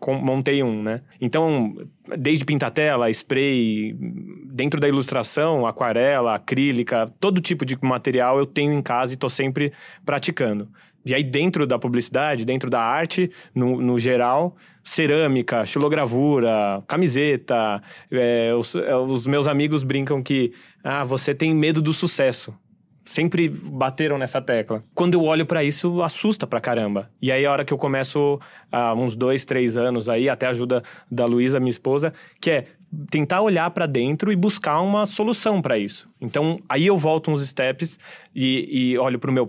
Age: 20-39